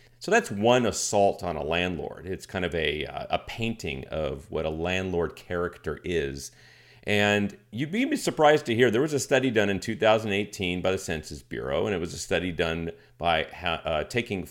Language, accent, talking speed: English, American, 190 wpm